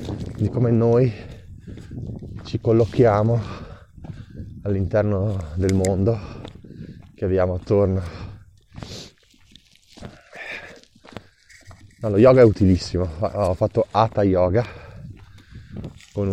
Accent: native